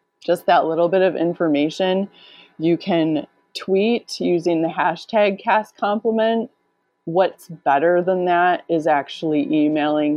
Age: 20-39